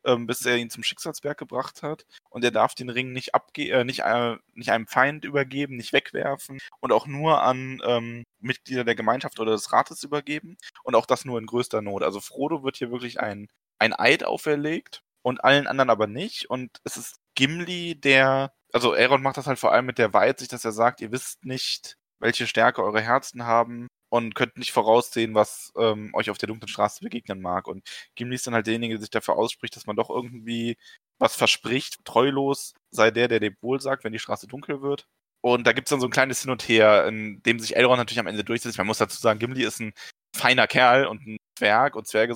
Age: 20-39